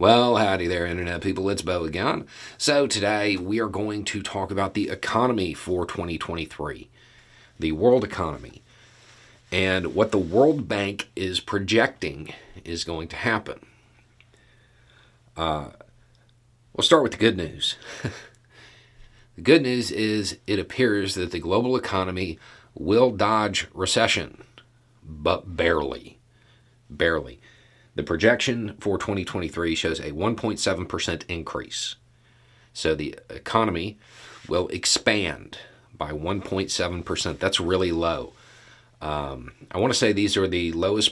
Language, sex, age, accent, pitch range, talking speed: English, male, 40-59, American, 85-120 Hz, 125 wpm